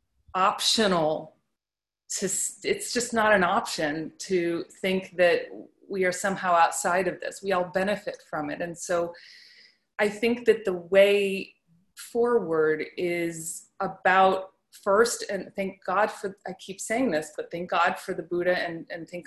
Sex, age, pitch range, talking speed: female, 30-49, 170-200 Hz, 155 wpm